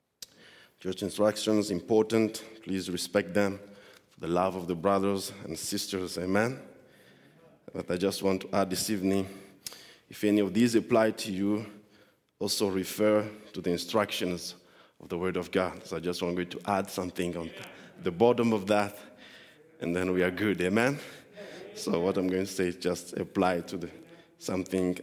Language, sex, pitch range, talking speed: English, male, 90-105 Hz, 170 wpm